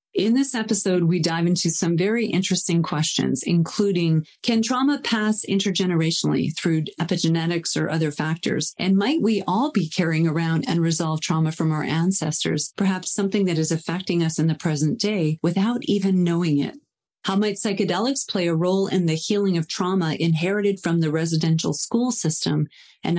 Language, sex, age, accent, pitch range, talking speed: English, female, 40-59, American, 160-200 Hz, 170 wpm